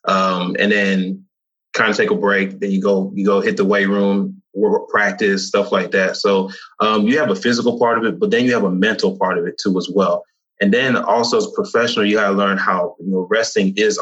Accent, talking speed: American, 250 wpm